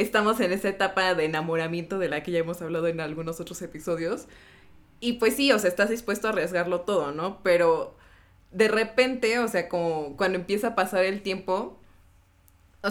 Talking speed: 185 wpm